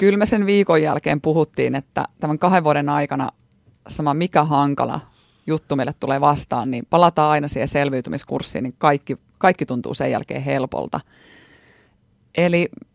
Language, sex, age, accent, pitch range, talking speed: Finnish, female, 30-49, native, 140-160 Hz, 145 wpm